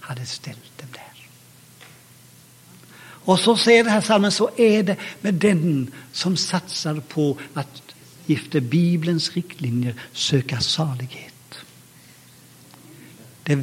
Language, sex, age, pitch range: English, male, 60-79, 135-170 Hz